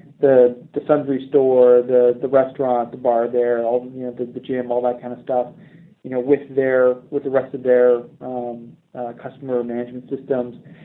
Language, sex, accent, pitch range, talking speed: English, male, American, 130-155 Hz, 195 wpm